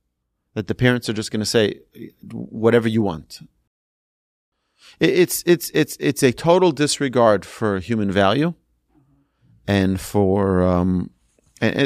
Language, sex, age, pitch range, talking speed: English, male, 40-59, 100-145 Hz, 125 wpm